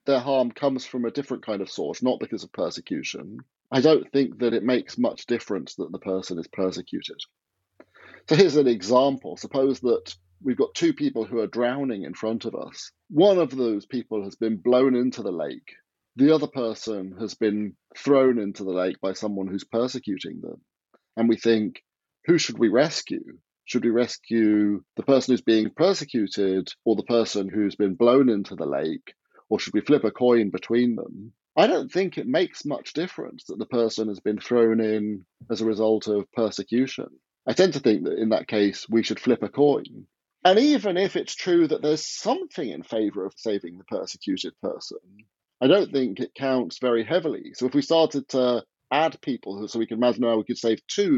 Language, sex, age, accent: English, male, 40-59, British